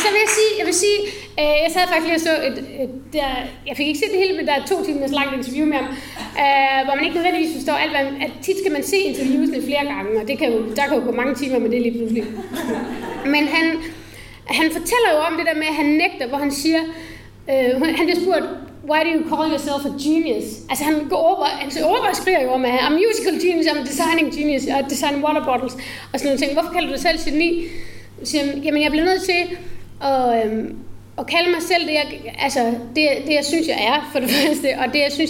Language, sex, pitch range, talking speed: Danish, female, 260-325 Hz, 250 wpm